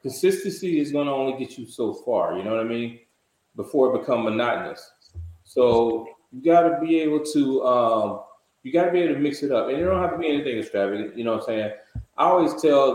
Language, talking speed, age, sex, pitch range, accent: English, 235 wpm, 20-39, male, 115-150 Hz, American